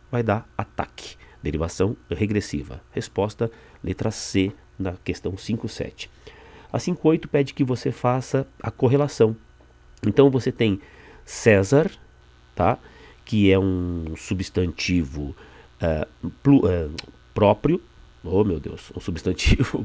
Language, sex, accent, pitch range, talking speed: Portuguese, male, Brazilian, 95-135 Hz, 115 wpm